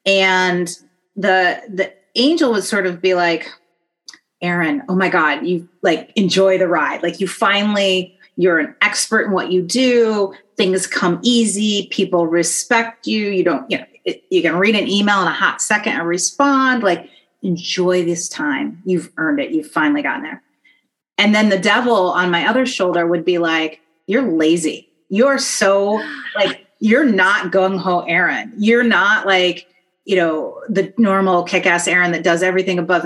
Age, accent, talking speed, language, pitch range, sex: 30-49, American, 170 wpm, English, 175-220 Hz, female